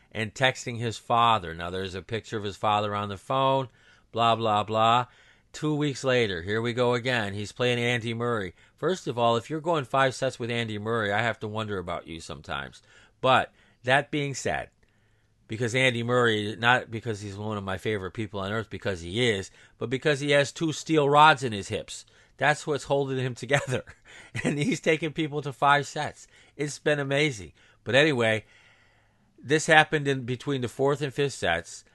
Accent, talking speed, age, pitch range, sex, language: American, 190 wpm, 40-59, 105-135 Hz, male, English